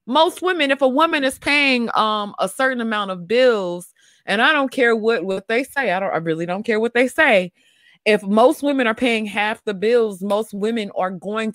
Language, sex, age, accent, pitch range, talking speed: English, female, 30-49, American, 175-230 Hz, 220 wpm